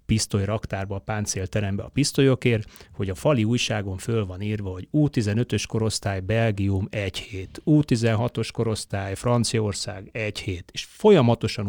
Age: 30-49